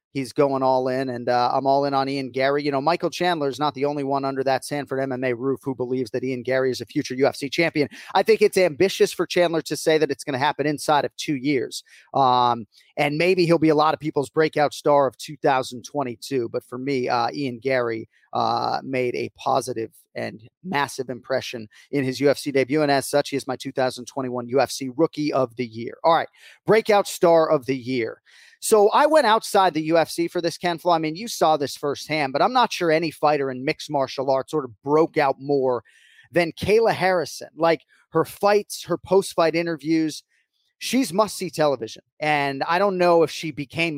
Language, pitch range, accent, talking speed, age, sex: English, 135-170 Hz, American, 205 wpm, 30-49, male